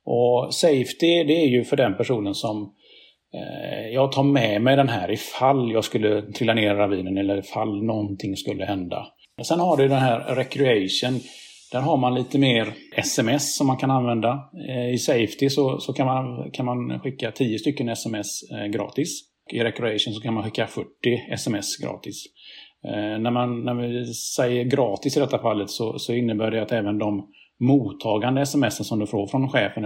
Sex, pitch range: male, 105-130 Hz